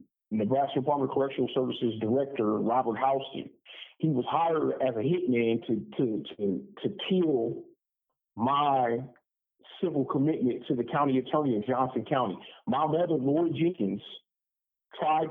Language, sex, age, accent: English, male, 50-69, American